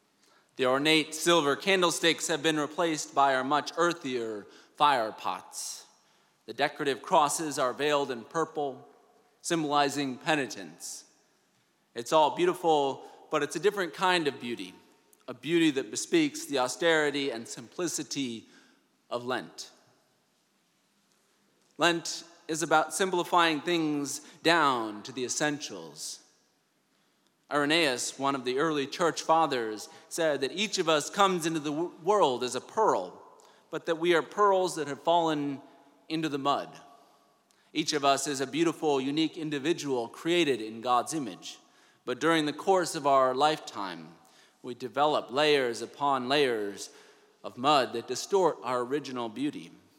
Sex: male